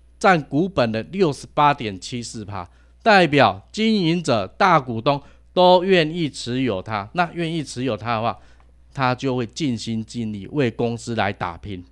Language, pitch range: Chinese, 100-150 Hz